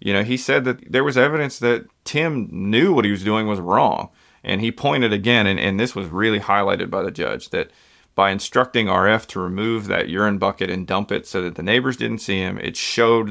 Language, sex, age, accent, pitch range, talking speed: English, male, 30-49, American, 100-115 Hz, 230 wpm